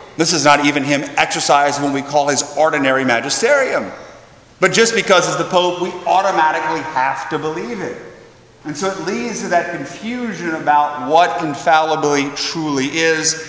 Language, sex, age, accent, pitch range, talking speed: English, male, 30-49, American, 145-195 Hz, 160 wpm